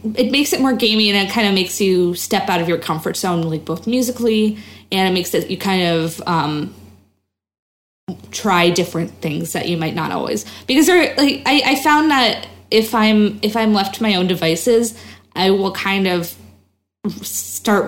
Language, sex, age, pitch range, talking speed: English, female, 20-39, 160-200 Hz, 190 wpm